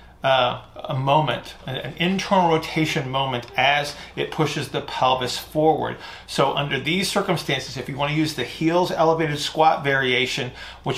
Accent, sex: American, male